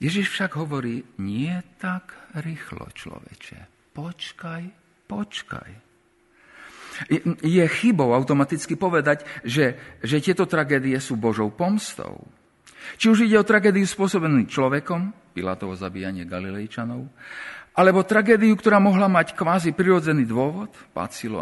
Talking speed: 110 wpm